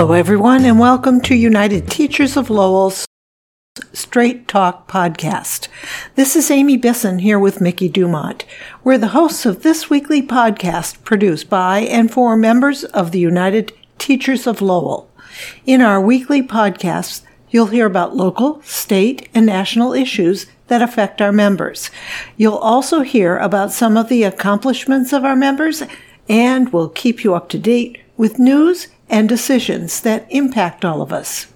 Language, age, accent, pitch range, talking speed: English, 60-79, American, 195-260 Hz, 155 wpm